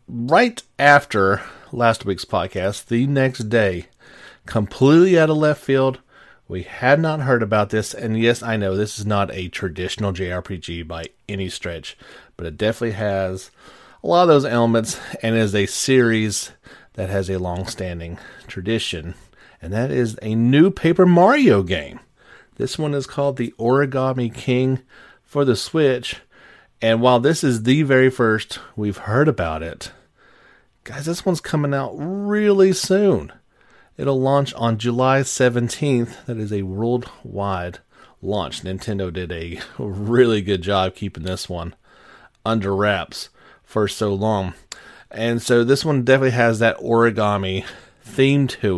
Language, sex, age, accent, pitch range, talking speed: English, male, 40-59, American, 95-130 Hz, 150 wpm